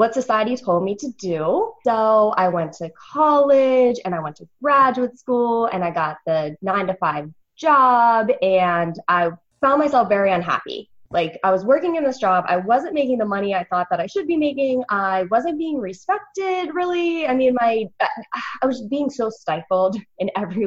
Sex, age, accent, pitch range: female, 20-39, American, 185-280 Hz